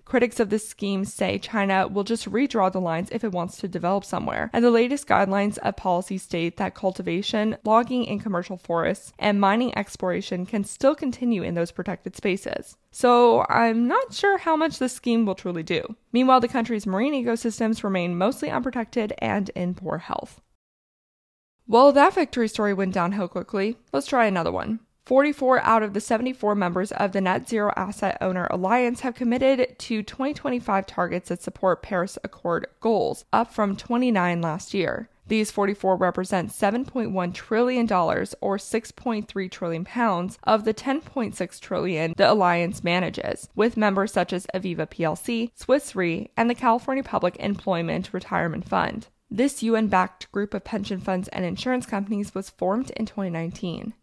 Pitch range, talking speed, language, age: 185-240 Hz, 160 wpm, English, 20-39